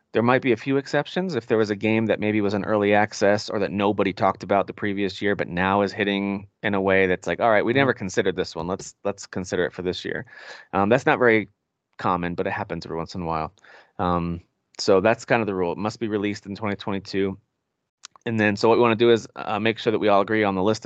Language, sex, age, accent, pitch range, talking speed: English, male, 30-49, American, 95-115 Hz, 270 wpm